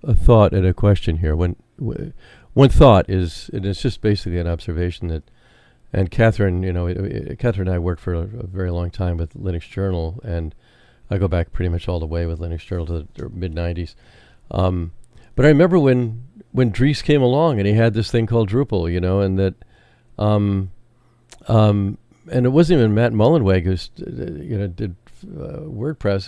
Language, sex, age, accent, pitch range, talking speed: English, male, 50-69, American, 95-120 Hz, 200 wpm